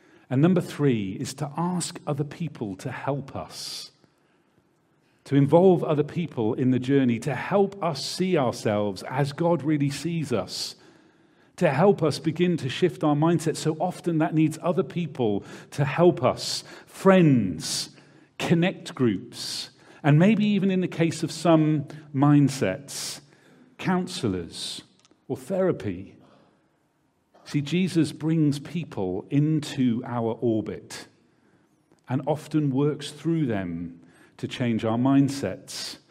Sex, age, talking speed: male, 40-59, 125 wpm